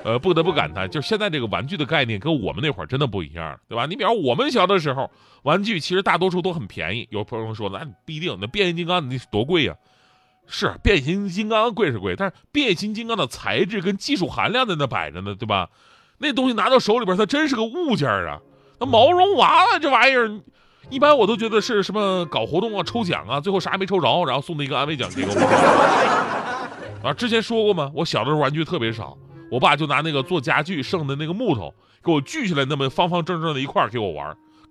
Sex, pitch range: male, 135-210 Hz